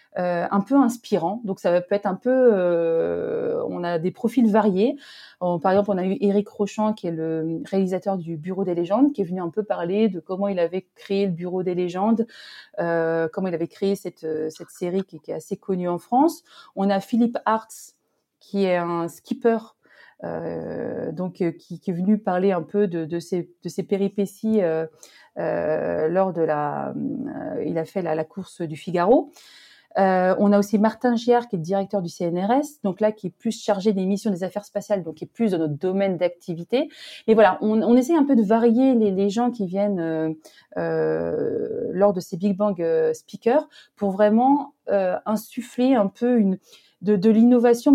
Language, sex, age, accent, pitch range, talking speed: French, female, 30-49, French, 175-225 Hz, 200 wpm